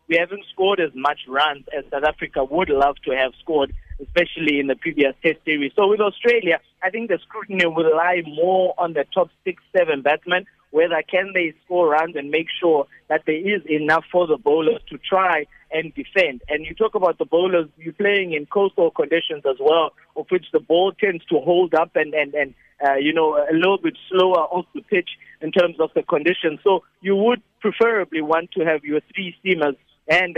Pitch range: 150-185 Hz